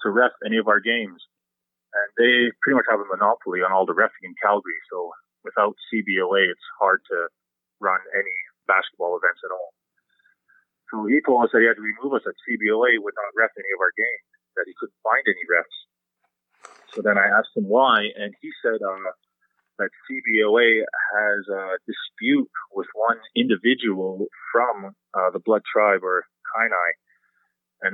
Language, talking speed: English, 175 wpm